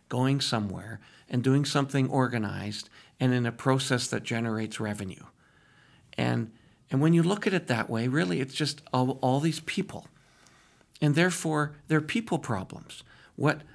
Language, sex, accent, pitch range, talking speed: English, male, American, 125-155 Hz, 155 wpm